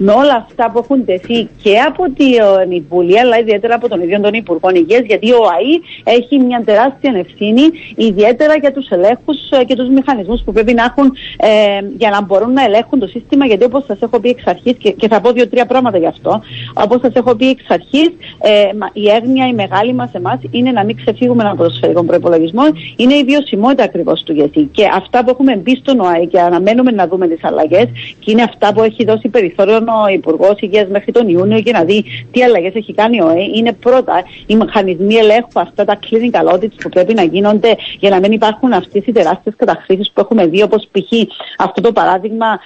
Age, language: 40-59, Greek